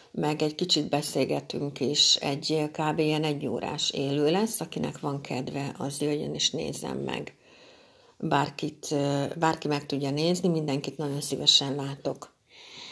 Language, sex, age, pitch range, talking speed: Hungarian, female, 60-79, 145-180 Hz, 135 wpm